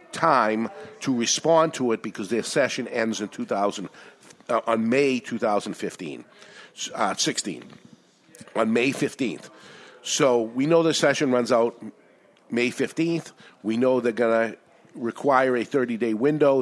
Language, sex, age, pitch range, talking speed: English, male, 50-69, 110-135 Hz, 135 wpm